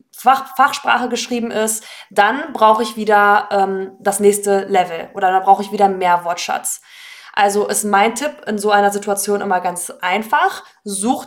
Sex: female